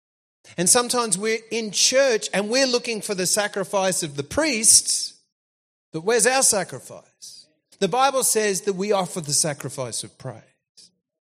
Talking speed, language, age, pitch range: 150 wpm, English, 40-59, 160-230 Hz